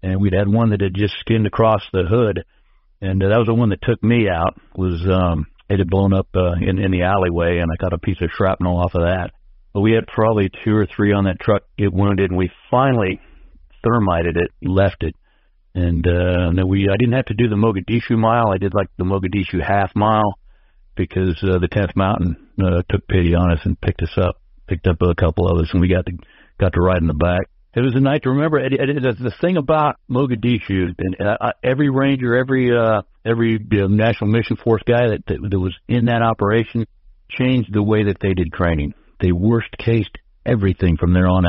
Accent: American